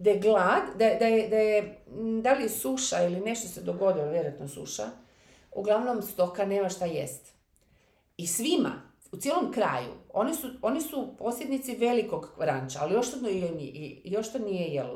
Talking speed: 165 wpm